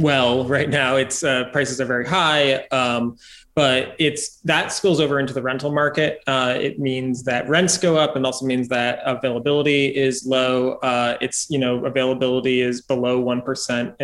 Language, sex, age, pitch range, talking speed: English, male, 20-39, 130-150 Hz, 175 wpm